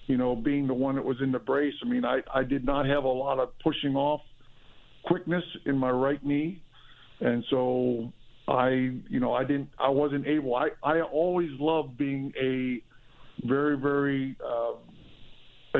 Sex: male